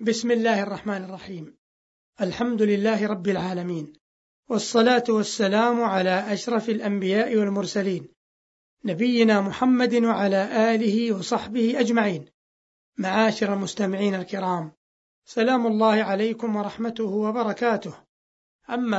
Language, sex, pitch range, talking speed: Arabic, male, 200-235 Hz, 90 wpm